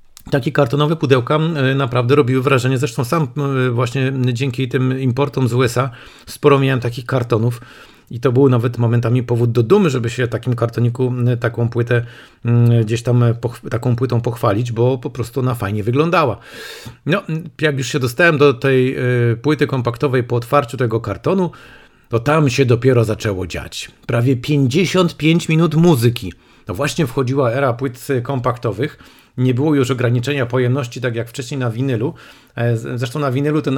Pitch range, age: 120-140 Hz, 40-59